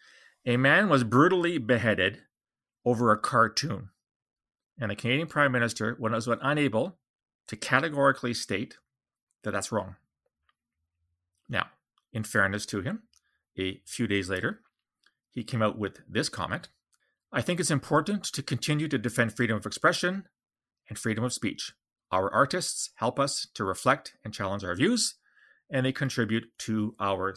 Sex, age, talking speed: male, 40-59, 145 wpm